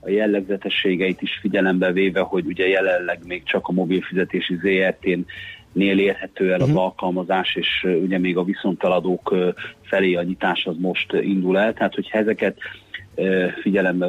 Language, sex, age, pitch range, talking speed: Hungarian, male, 30-49, 90-100 Hz, 140 wpm